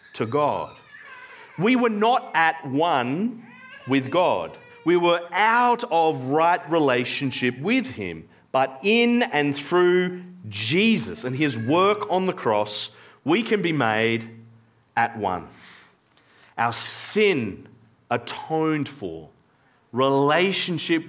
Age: 40-59